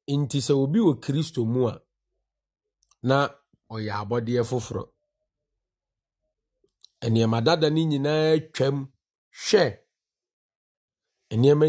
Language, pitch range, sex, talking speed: English, 115-145 Hz, male, 90 wpm